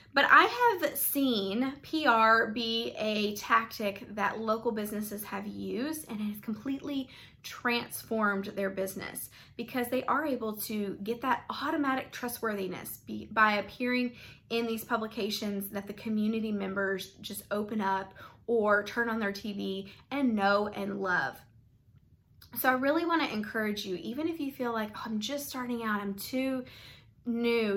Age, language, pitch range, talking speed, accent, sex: 20-39, English, 205-245 Hz, 150 wpm, American, female